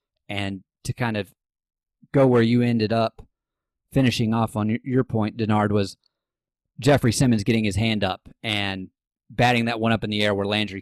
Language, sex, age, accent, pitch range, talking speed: English, male, 30-49, American, 105-125 Hz, 175 wpm